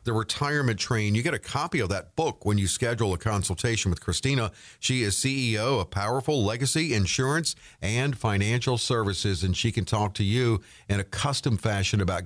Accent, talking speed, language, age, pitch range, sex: American, 185 wpm, English, 50-69, 100-150 Hz, male